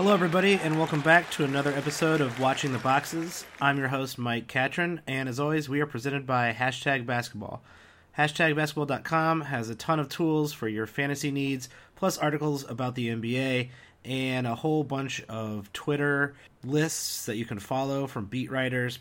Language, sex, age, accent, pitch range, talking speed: English, male, 30-49, American, 120-150 Hz, 175 wpm